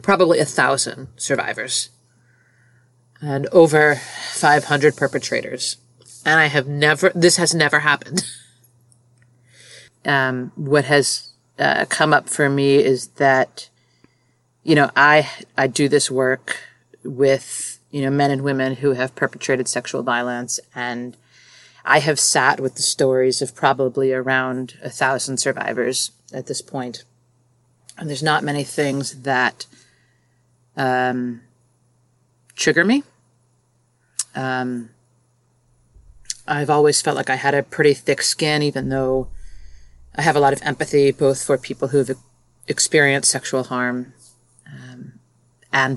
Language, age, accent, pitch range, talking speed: English, 30-49, American, 125-145 Hz, 130 wpm